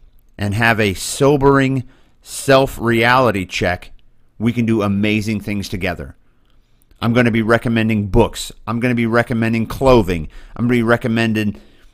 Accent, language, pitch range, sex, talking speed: American, English, 95-120 Hz, male, 130 wpm